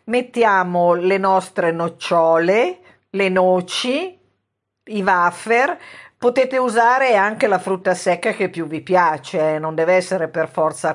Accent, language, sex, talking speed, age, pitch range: native, Italian, female, 130 wpm, 50-69, 170-225 Hz